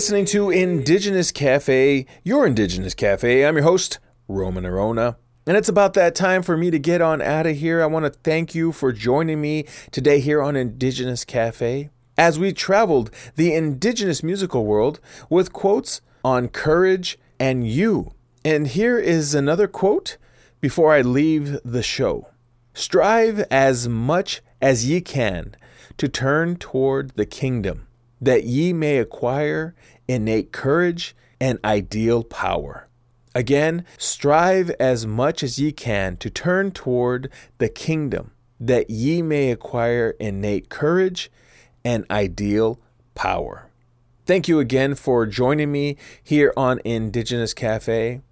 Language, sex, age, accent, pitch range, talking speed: English, male, 30-49, American, 115-160 Hz, 140 wpm